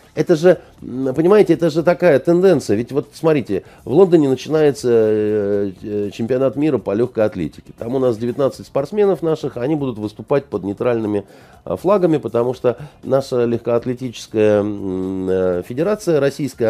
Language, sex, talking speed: Russian, male, 130 wpm